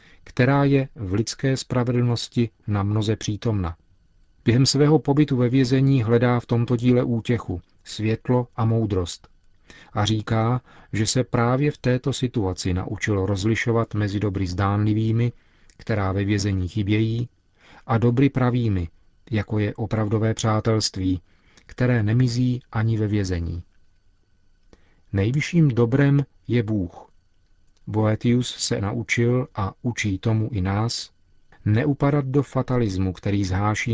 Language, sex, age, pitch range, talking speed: Czech, male, 40-59, 95-125 Hz, 120 wpm